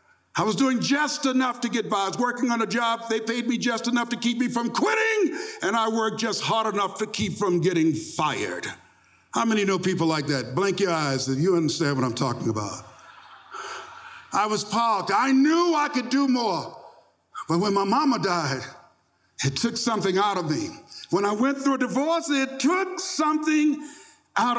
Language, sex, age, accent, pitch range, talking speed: English, male, 60-79, American, 155-250 Hz, 200 wpm